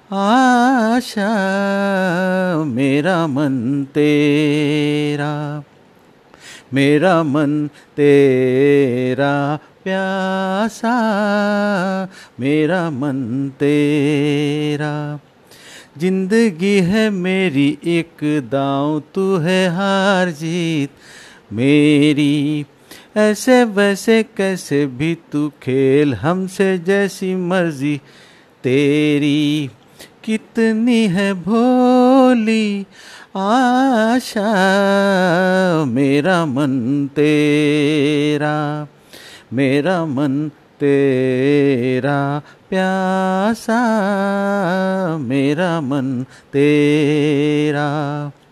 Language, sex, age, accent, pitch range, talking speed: Hindi, male, 50-69, native, 145-195 Hz, 55 wpm